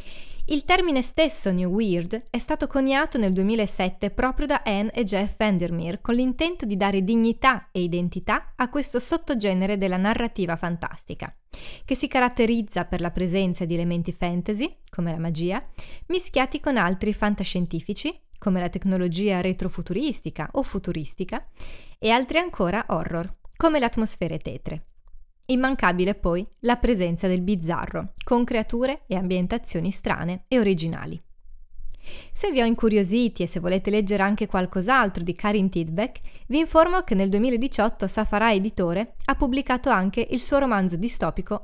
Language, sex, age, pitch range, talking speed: Italian, female, 20-39, 180-250 Hz, 145 wpm